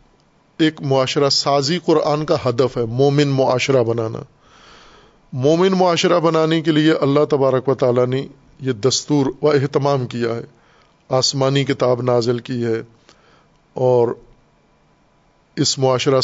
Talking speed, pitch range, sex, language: 115 wpm, 125-160 Hz, male, Urdu